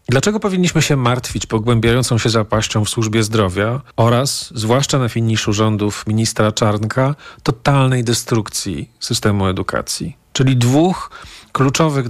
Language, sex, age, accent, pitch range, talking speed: Polish, male, 40-59, native, 110-145 Hz, 120 wpm